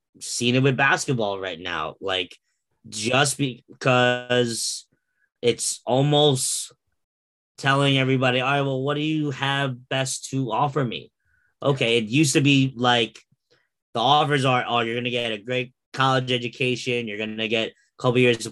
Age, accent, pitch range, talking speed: 20-39, American, 115-135 Hz, 155 wpm